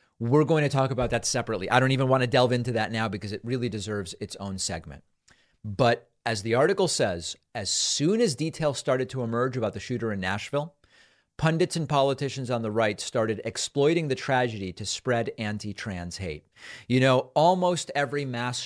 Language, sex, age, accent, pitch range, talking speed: English, male, 40-59, American, 105-145 Hz, 195 wpm